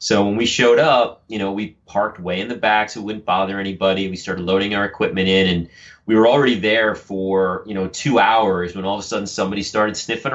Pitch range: 95-110 Hz